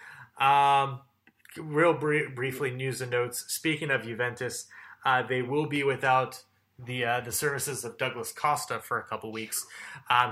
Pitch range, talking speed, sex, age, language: 115-135 Hz, 155 wpm, male, 20-39, English